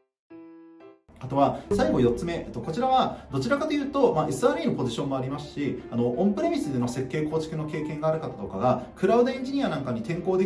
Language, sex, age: Japanese, male, 30-49